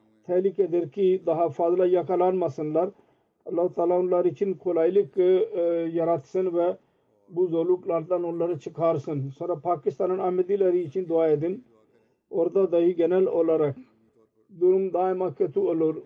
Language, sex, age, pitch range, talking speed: Turkish, male, 50-69, 165-185 Hz, 110 wpm